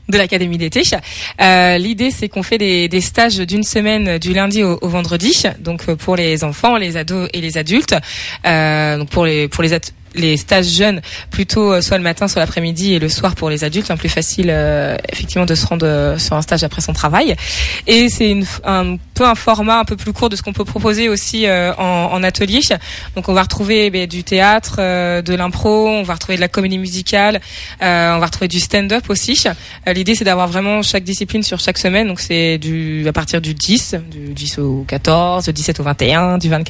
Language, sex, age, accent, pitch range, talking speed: French, female, 20-39, French, 165-205 Hz, 220 wpm